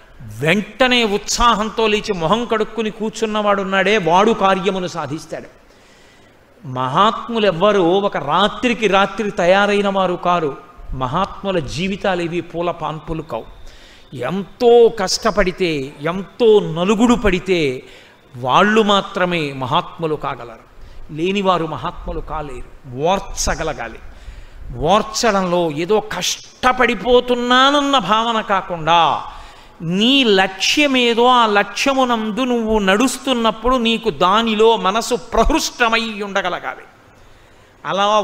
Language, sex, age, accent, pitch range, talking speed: Telugu, male, 50-69, native, 175-230 Hz, 80 wpm